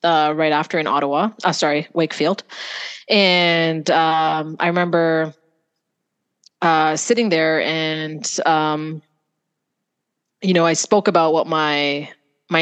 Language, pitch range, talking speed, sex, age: French, 155-180 Hz, 120 wpm, female, 20-39